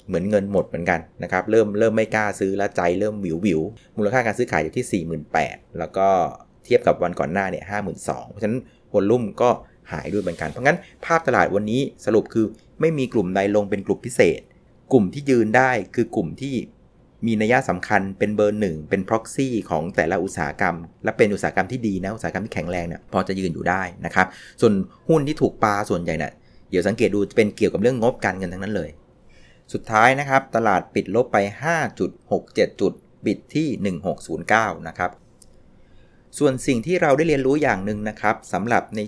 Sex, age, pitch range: male, 30-49, 95-125 Hz